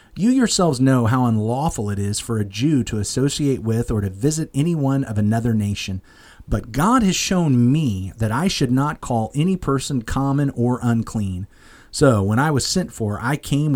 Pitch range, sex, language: 110-150 Hz, male, English